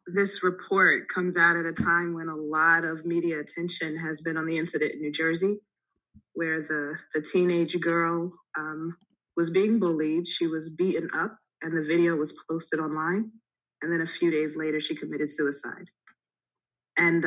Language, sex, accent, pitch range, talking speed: English, female, American, 155-180 Hz, 175 wpm